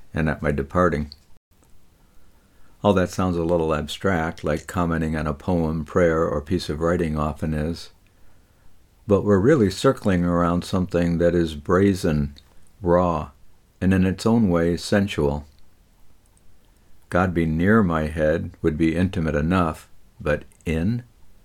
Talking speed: 135 wpm